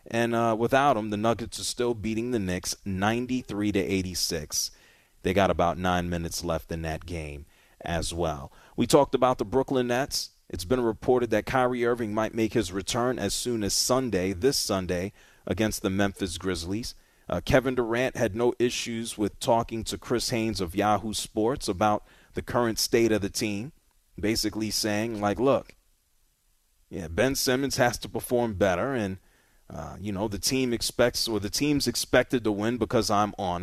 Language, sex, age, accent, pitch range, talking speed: English, male, 30-49, American, 100-130 Hz, 175 wpm